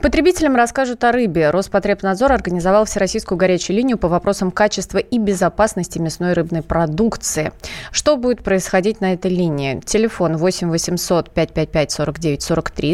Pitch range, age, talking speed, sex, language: 165-215 Hz, 20-39, 135 wpm, female, Russian